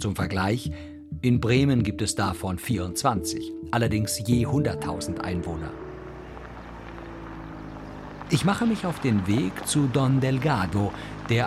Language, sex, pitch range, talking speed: German, male, 100-135 Hz, 115 wpm